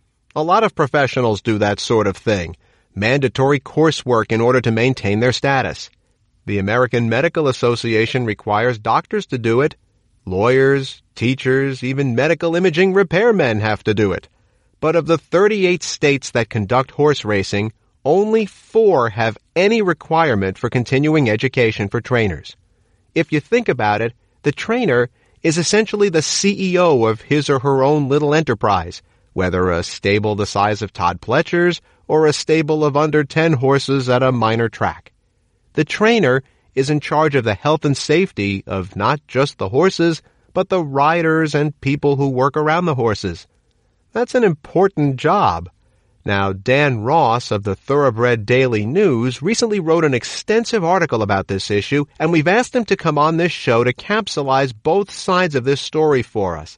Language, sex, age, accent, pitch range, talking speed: English, male, 40-59, American, 110-160 Hz, 165 wpm